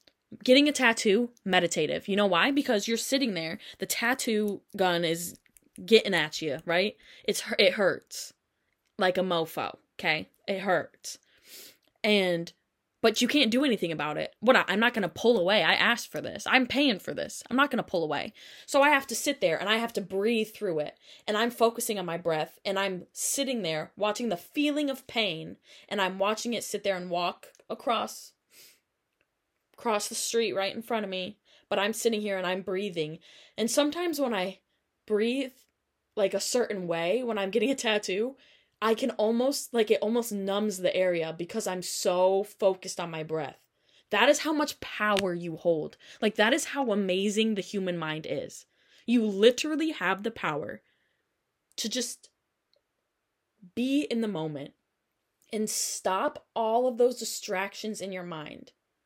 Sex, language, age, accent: female, English, 10-29, American